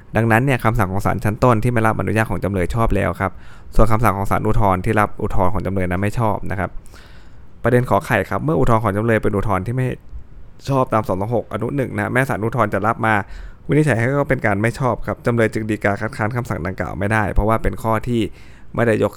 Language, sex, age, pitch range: Thai, male, 20-39, 95-115 Hz